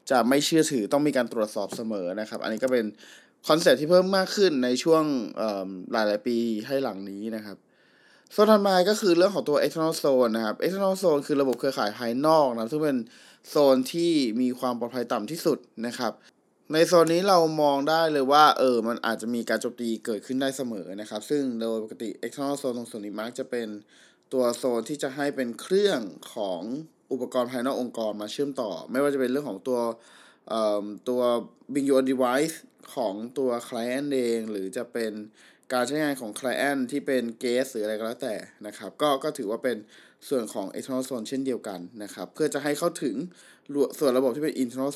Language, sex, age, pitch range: Thai, male, 20-39, 115-145 Hz